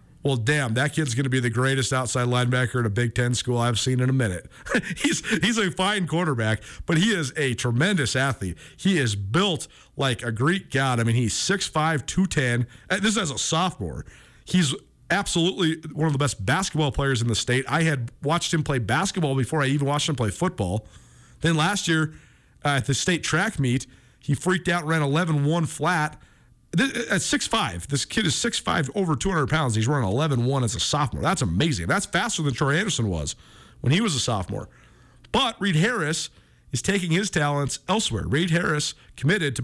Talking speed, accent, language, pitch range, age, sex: 200 wpm, American, English, 120-165 Hz, 40-59, male